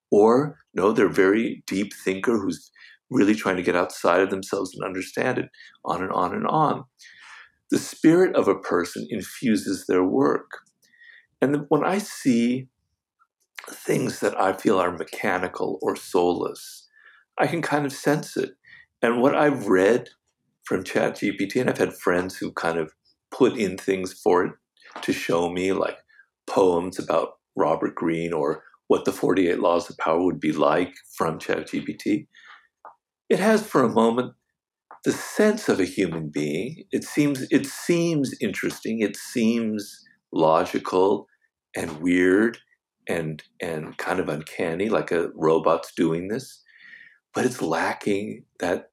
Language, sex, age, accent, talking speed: English, male, 50-69, American, 150 wpm